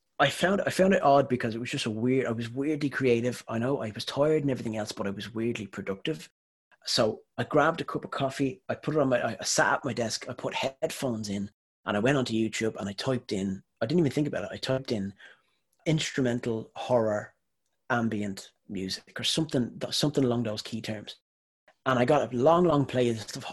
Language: English